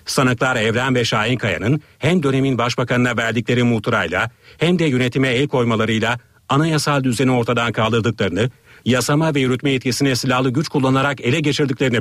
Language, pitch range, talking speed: Turkish, 115-145 Hz, 140 wpm